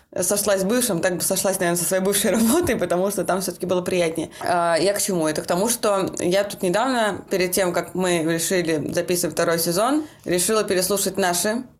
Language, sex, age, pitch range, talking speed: Russian, female, 20-39, 170-210 Hz, 195 wpm